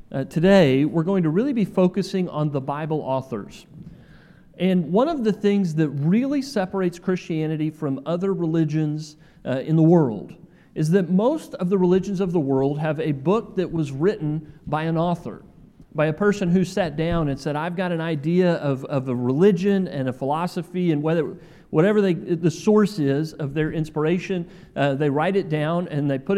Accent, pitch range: American, 150-190 Hz